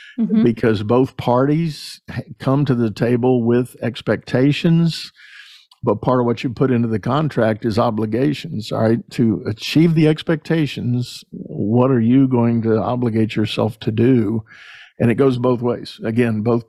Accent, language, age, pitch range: American, English, 50-69, 110-130 Hz